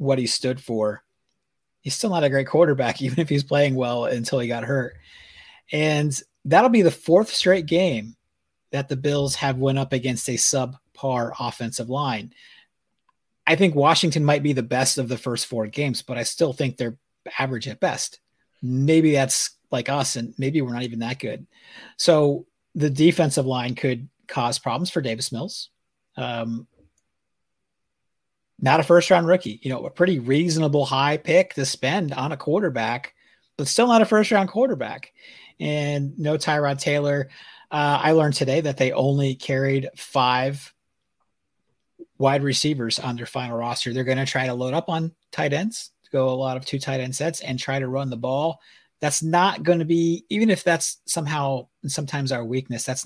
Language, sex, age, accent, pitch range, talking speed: English, male, 30-49, American, 130-155 Hz, 180 wpm